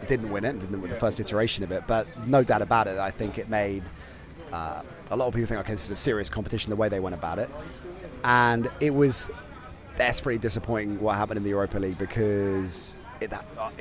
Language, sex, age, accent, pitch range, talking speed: English, male, 30-49, British, 100-120 Hz, 215 wpm